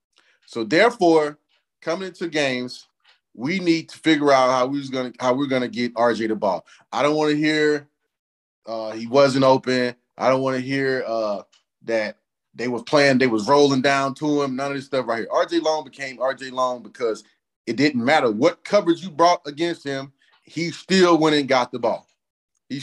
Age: 30-49